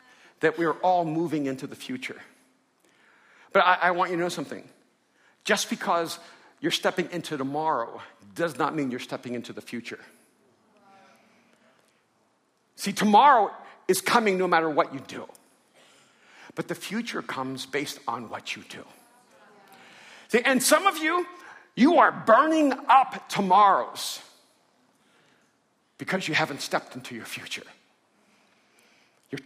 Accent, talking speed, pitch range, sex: American, 135 wpm, 135-200 Hz, male